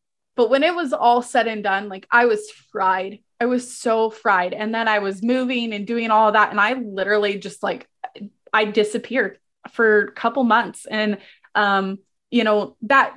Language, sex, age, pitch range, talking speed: English, female, 20-39, 205-235 Hz, 190 wpm